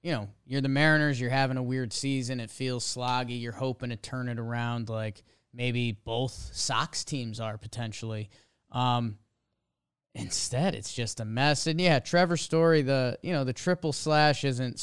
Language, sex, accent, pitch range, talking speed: English, male, American, 120-155 Hz, 175 wpm